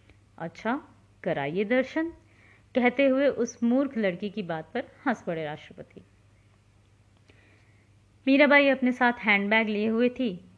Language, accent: Hindi, native